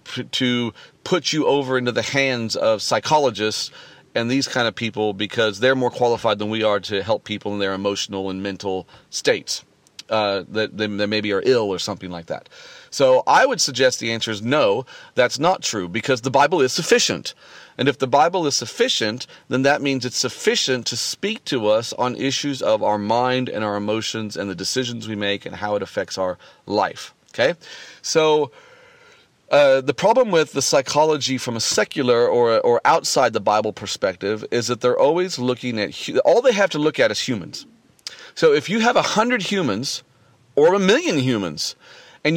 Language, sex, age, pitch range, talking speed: English, male, 40-59, 110-155 Hz, 190 wpm